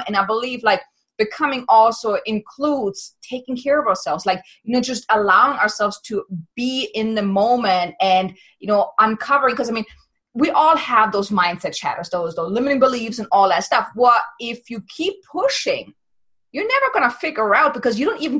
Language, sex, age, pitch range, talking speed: English, female, 30-49, 205-260 Hz, 190 wpm